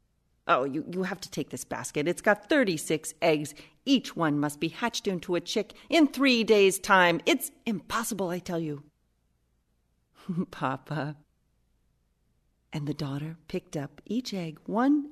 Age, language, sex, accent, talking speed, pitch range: 40-59, English, female, American, 150 wpm, 150-210 Hz